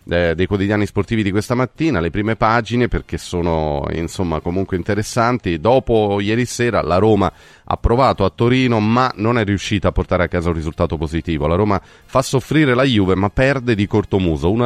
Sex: male